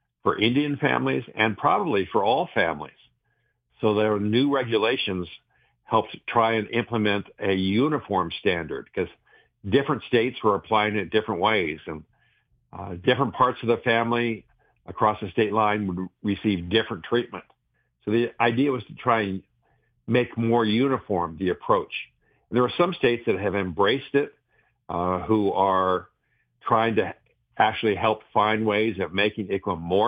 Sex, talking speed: male, 155 wpm